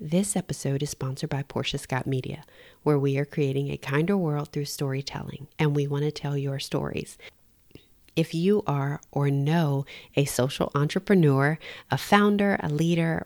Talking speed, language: 165 wpm, English